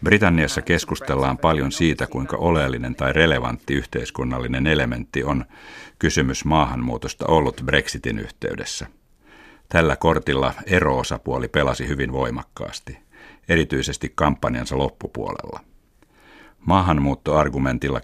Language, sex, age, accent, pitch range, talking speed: Finnish, male, 60-79, native, 65-80 Hz, 85 wpm